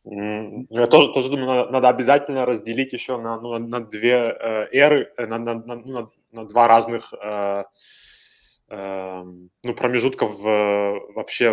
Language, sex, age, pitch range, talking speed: Russian, male, 20-39, 105-125 Hz, 120 wpm